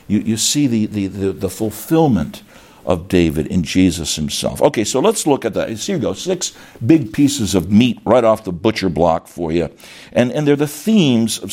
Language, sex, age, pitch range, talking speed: English, male, 60-79, 85-135 Hz, 210 wpm